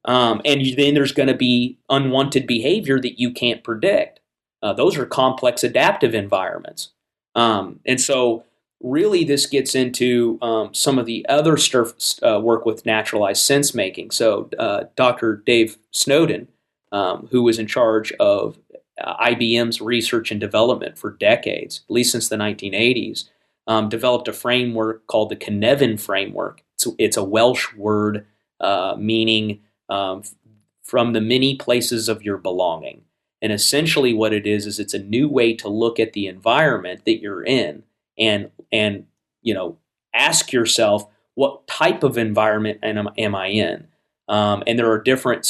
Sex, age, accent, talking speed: male, 30-49, American, 160 wpm